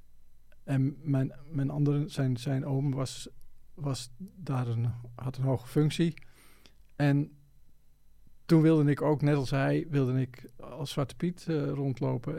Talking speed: 145 wpm